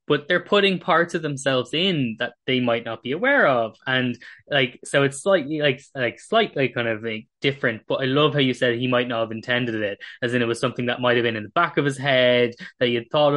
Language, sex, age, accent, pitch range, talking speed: English, male, 10-29, Irish, 115-140 Hz, 250 wpm